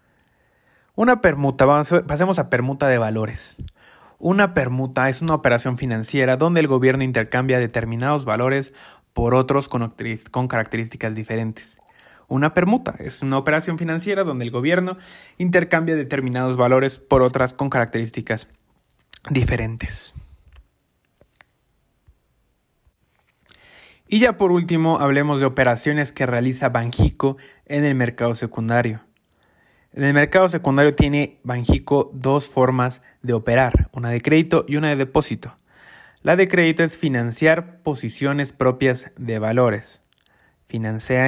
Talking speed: 120 wpm